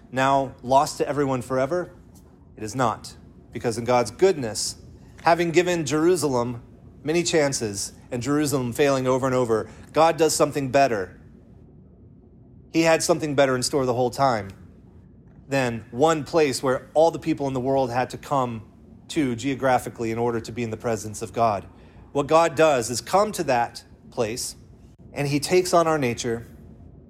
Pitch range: 120-160 Hz